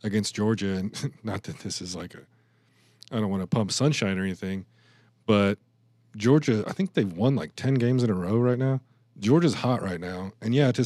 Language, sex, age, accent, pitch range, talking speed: English, male, 40-59, American, 100-120 Hz, 210 wpm